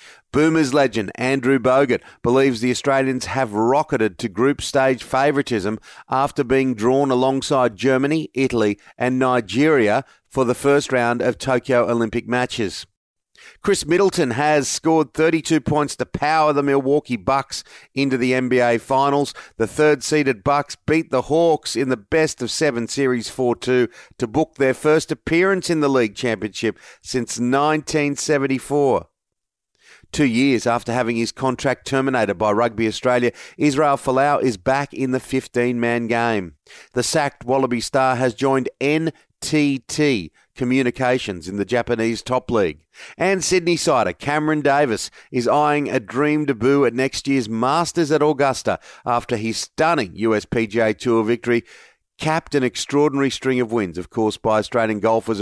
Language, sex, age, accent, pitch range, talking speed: English, male, 40-59, Australian, 120-145 Hz, 140 wpm